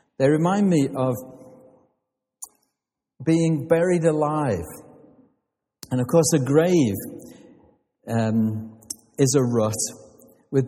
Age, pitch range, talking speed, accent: 60-79, 125-170 Hz, 95 wpm, British